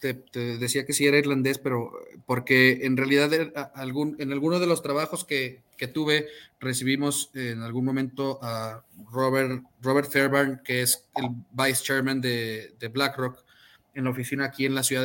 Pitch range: 130-175 Hz